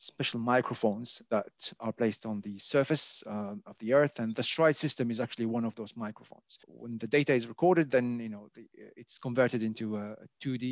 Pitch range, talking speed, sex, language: 110-130 Hz, 195 wpm, male, English